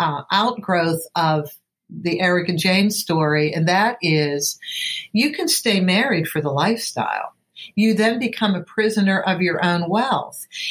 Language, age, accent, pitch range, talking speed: English, 50-69, American, 175-225 Hz, 145 wpm